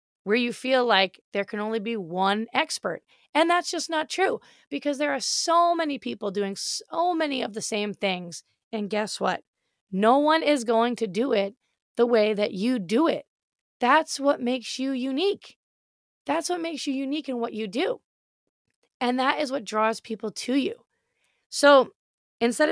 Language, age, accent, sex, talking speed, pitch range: English, 20-39, American, female, 180 wpm, 210-275 Hz